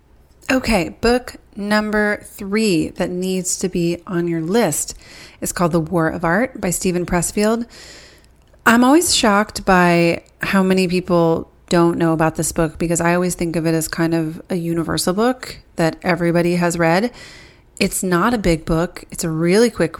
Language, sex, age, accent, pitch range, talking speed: English, female, 30-49, American, 165-190 Hz, 170 wpm